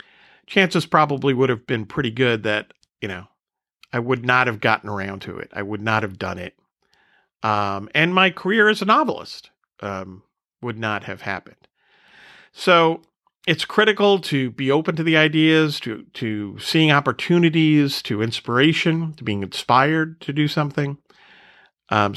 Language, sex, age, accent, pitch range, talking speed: English, male, 40-59, American, 105-150 Hz, 155 wpm